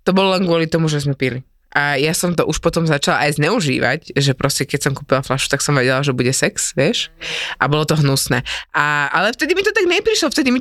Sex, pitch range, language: female, 140-185 Hz, Slovak